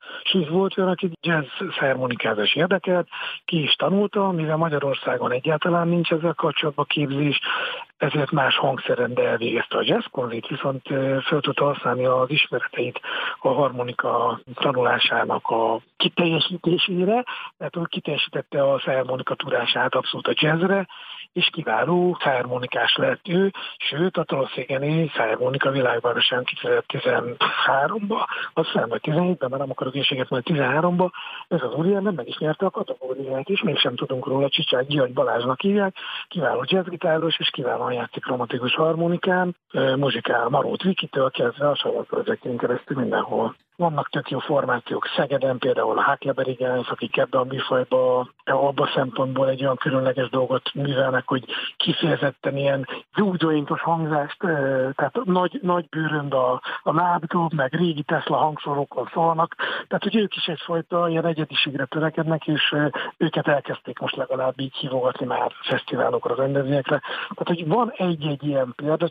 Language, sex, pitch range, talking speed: Hungarian, male, 135-180 Hz, 140 wpm